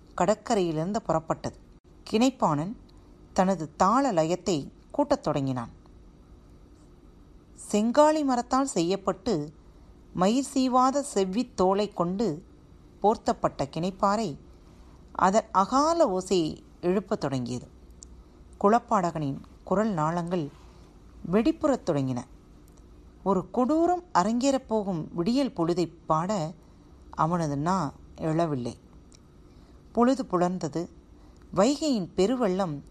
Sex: female